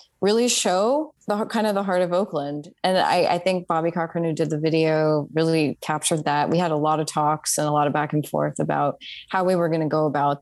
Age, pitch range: 20-39, 155-195 Hz